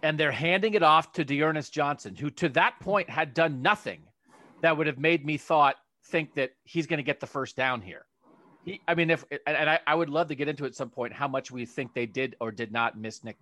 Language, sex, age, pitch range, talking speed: English, male, 40-59, 130-160 Hz, 255 wpm